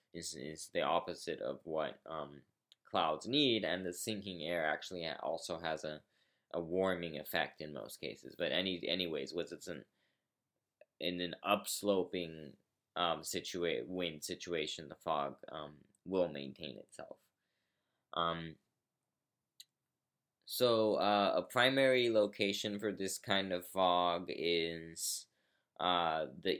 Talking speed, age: 125 wpm, 20-39